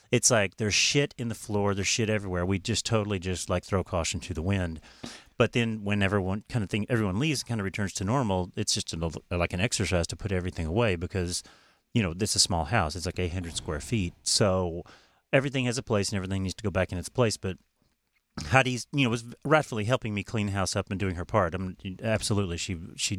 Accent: American